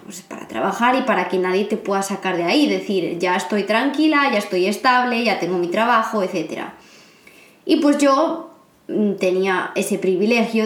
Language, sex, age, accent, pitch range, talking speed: Spanish, female, 20-39, Spanish, 185-235 Hz, 170 wpm